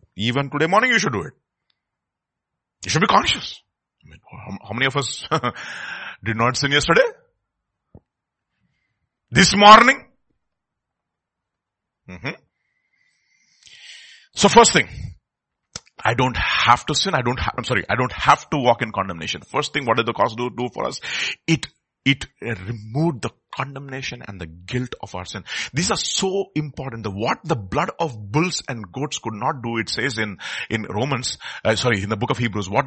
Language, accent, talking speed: English, Indian, 165 wpm